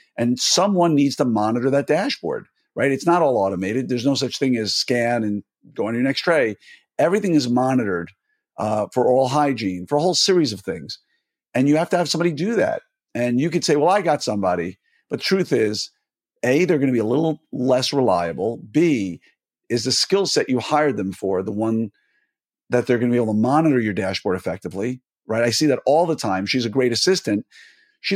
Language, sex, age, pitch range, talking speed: English, male, 50-69, 115-155 Hz, 210 wpm